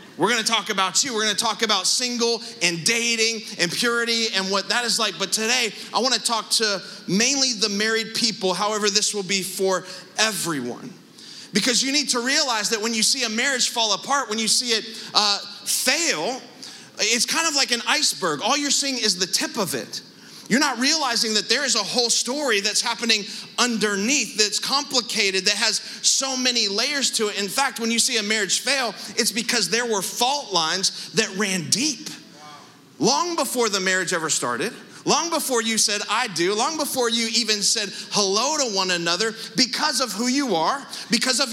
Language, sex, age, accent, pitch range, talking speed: English, male, 30-49, American, 210-250 Hz, 200 wpm